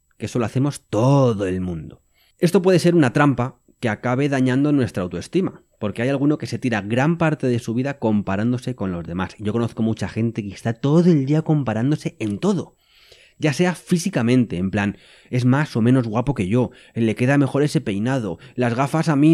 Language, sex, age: Spanish, male, 30-49